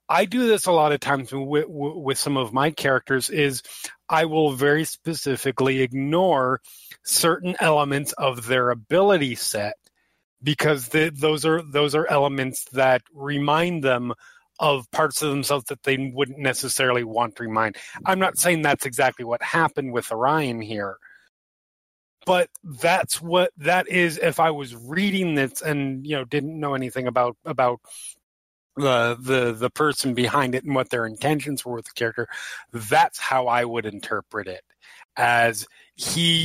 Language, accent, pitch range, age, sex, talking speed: English, American, 125-160 Hz, 30-49, male, 155 wpm